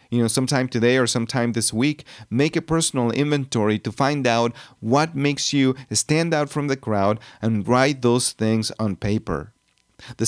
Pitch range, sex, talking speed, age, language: 110-140 Hz, male, 175 wpm, 40-59, English